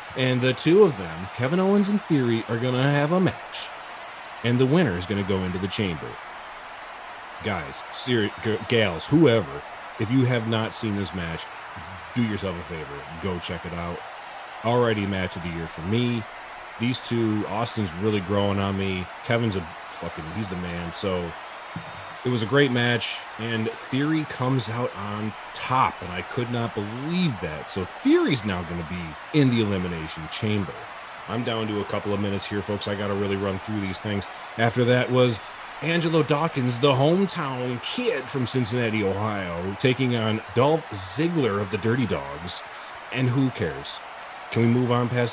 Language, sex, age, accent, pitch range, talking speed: English, male, 30-49, American, 95-125 Hz, 180 wpm